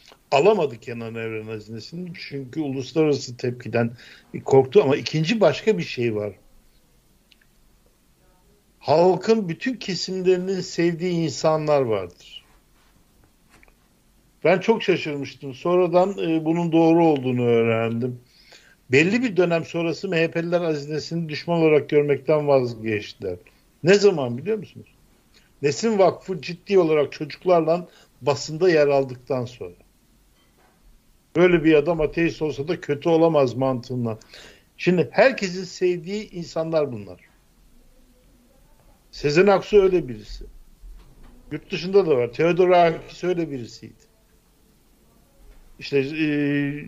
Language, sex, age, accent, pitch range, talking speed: Turkish, male, 60-79, native, 135-175 Hz, 100 wpm